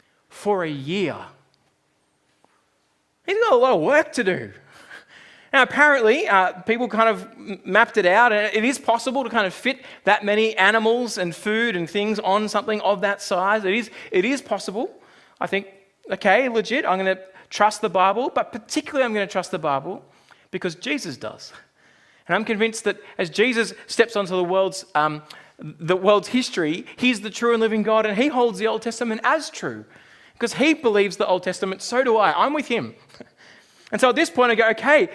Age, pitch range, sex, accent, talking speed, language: 20-39, 190-250 Hz, male, Australian, 195 wpm, English